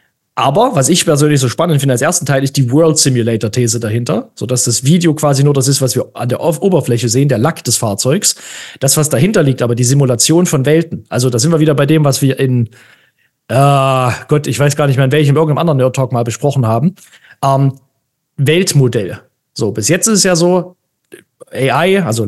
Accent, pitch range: German, 125-155 Hz